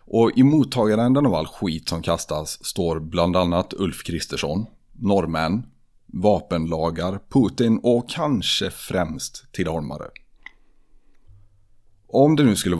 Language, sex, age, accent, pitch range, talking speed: Swedish, male, 30-49, native, 85-105 Hz, 115 wpm